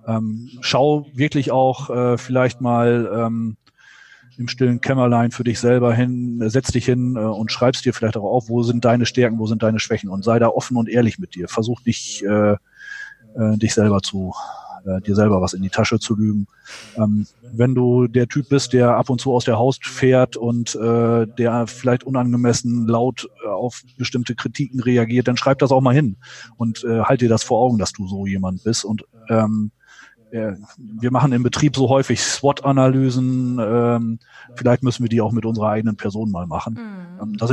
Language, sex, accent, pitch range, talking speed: German, male, German, 105-125 Hz, 190 wpm